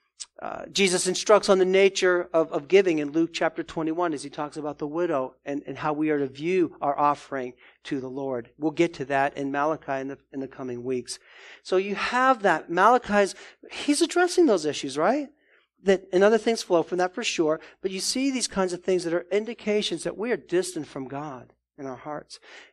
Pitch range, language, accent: 140-195 Hz, English, American